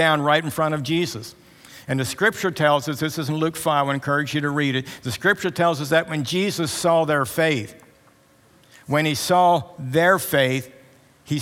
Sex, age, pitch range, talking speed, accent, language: male, 60-79, 130-155 Hz, 200 wpm, American, English